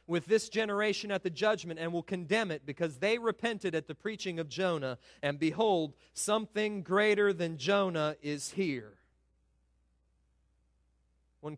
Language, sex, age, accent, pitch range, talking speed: English, male, 40-59, American, 115-190 Hz, 140 wpm